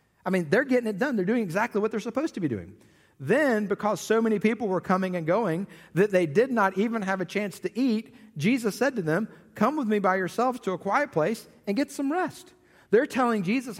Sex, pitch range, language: male, 145-210 Hz, English